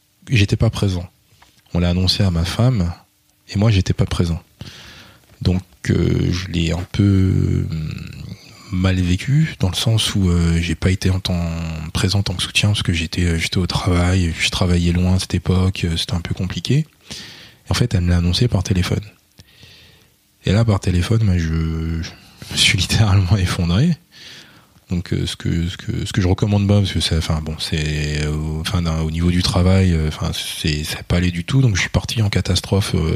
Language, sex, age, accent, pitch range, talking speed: French, male, 20-39, French, 85-105 Hz, 190 wpm